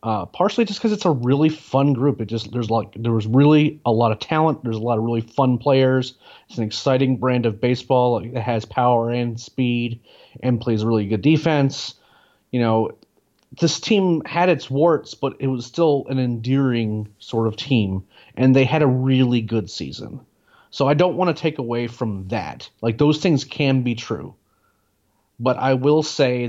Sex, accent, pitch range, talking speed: male, American, 110-135 Hz, 195 wpm